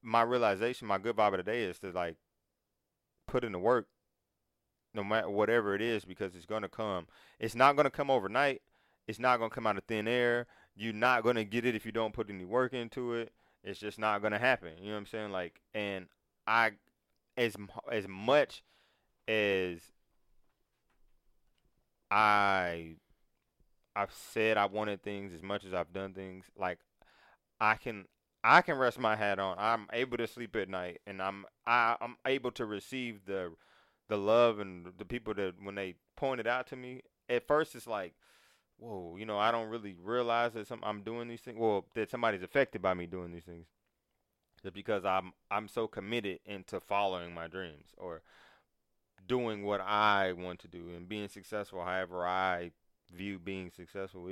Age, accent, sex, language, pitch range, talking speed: 20-39, American, male, English, 95-115 Hz, 190 wpm